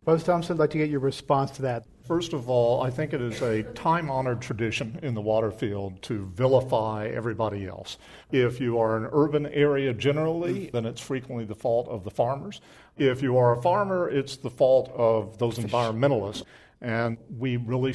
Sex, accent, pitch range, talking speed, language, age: male, American, 115-140 Hz, 190 wpm, English, 50-69